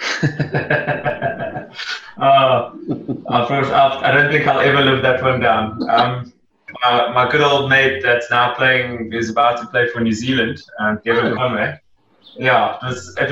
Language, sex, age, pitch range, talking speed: English, male, 20-39, 110-130 Hz, 150 wpm